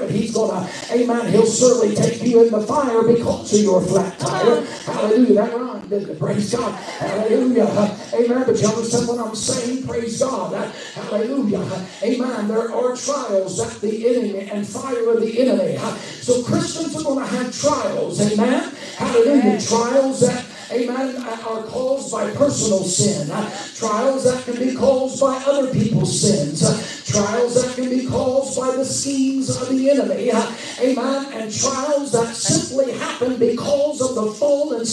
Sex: male